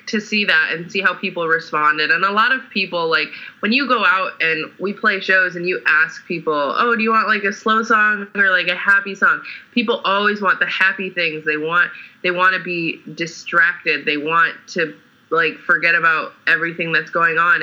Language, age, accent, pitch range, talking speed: English, 20-39, American, 150-190 Hz, 210 wpm